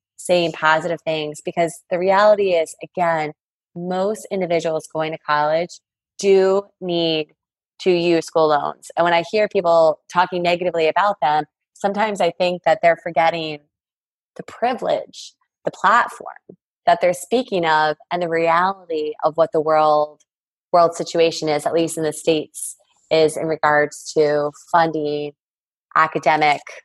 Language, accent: English, American